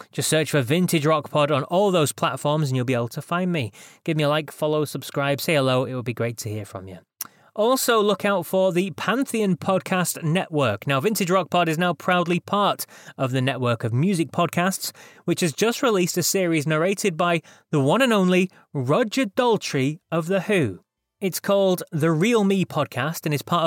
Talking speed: 205 wpm